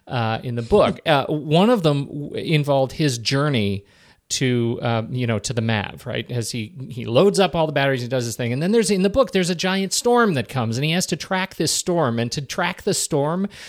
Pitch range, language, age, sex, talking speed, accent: 125-165 Hz, English, 40-59, male, 245 wpm, American